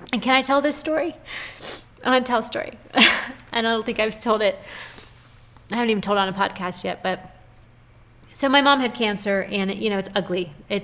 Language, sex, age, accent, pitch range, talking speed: English, female, 30-49, American, 190-240 Hz, 215 wpm